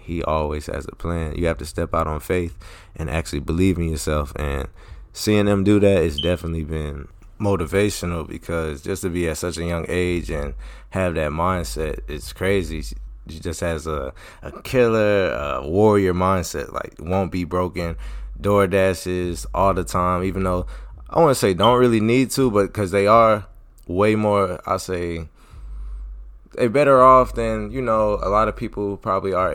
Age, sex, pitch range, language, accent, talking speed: 20-39, male, 80-100 Hz, English, American, 180 wpm